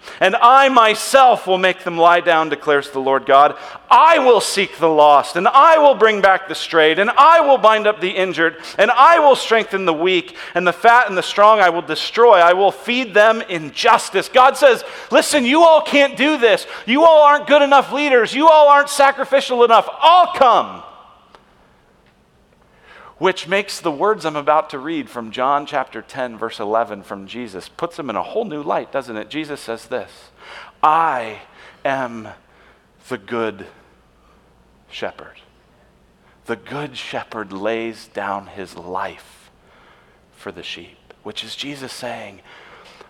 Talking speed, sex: 165 wpm, male